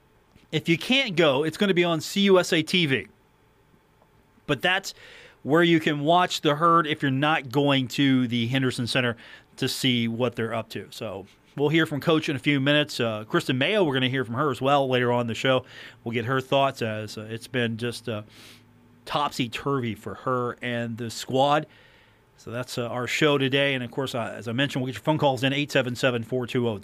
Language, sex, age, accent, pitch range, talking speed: English, male, 40-59, American, 125-170 Hz, 210 wpm